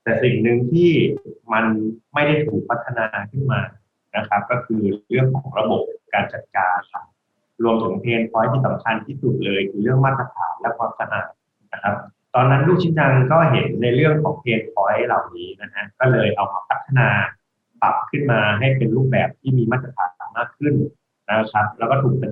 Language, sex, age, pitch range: Thai, male, 20-39, 115-145 Hz